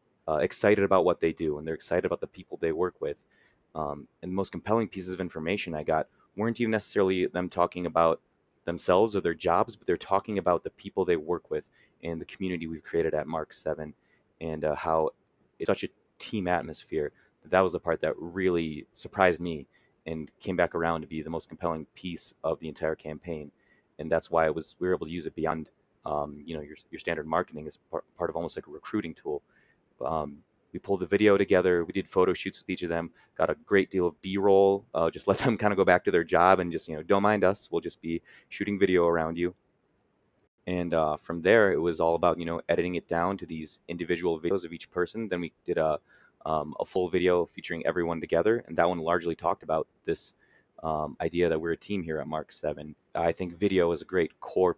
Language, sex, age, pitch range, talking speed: English, male, 30-49, 80-95 Hz, 230 wpm